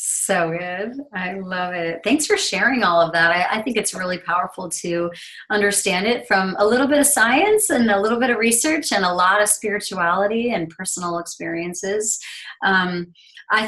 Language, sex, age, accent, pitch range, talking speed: English, female, 30-49, American, 175-235 Hz, 185 wpm